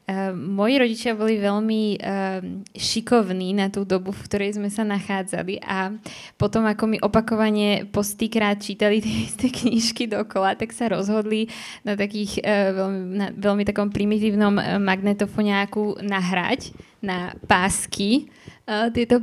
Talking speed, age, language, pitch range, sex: 130 wpm, 20-39, Slovak, 195-220 Hz, female